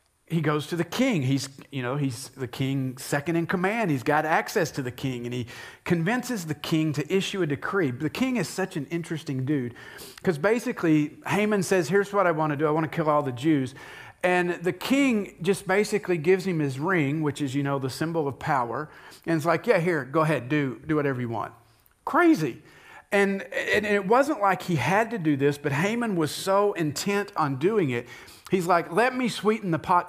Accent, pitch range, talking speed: American, 140-185 Hz, 215 wpm